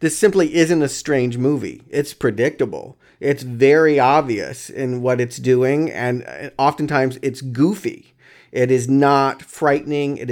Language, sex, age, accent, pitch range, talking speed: English, male, 40-59, American, 125-165 Hz, 140 wpm